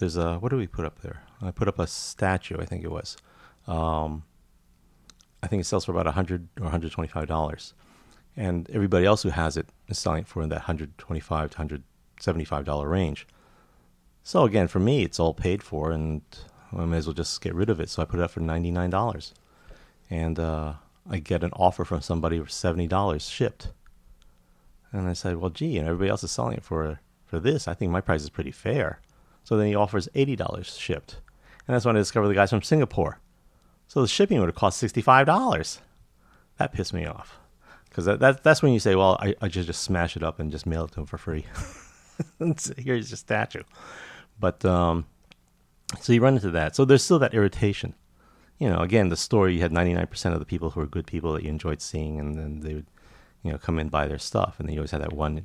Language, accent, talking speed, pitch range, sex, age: English, American, 220 wpm, 80-95 Hz, male, 30-49